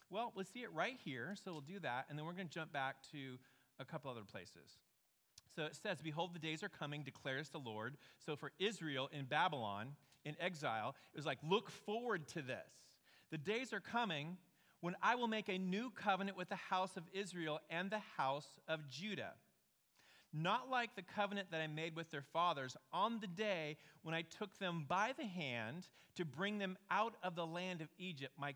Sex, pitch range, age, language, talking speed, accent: male, 150-210 Hz, 40-59, English, 205 wpm, American